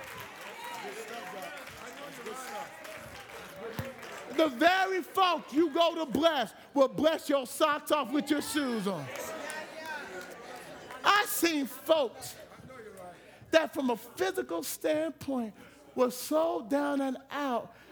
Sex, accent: male, American